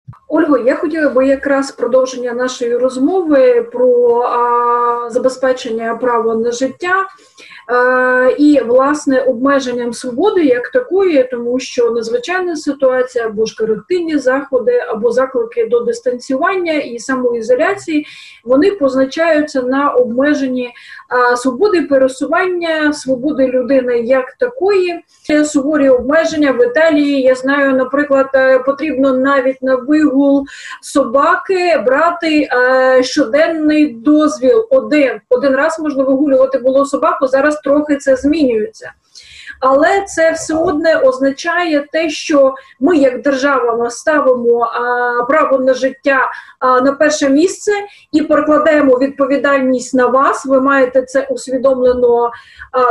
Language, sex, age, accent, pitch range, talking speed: Ukrainian, female, 30-49, native, 255-310 Hz, 115 wpm